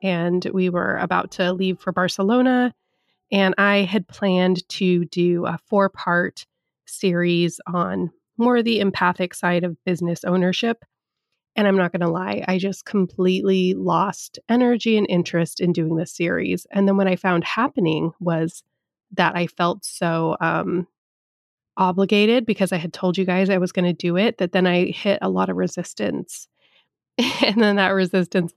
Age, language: 20-39, English